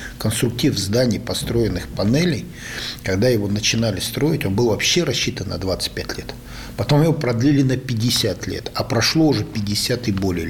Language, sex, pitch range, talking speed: Russian, male, 100-130 Hz, 155 wpm